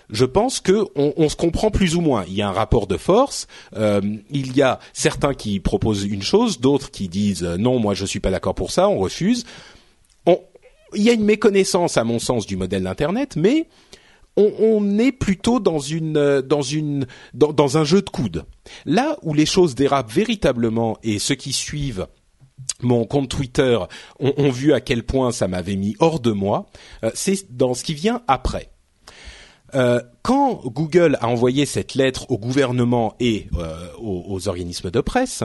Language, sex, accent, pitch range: French, male, French, 115-175 Hz